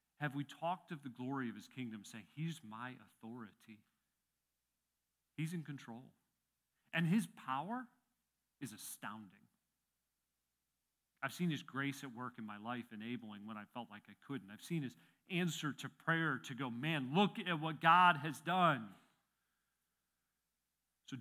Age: 40-59